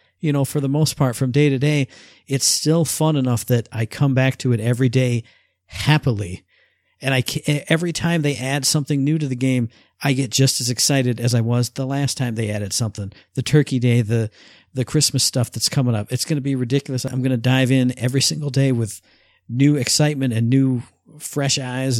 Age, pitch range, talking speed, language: 50-69, 120-145 Hz, 215 wpm, English